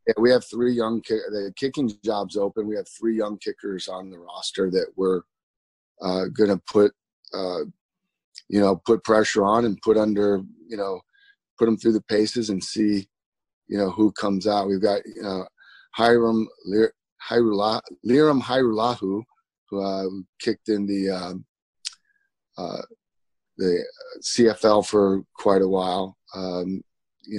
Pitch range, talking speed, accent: 95-110 Hz, 140 wpm, American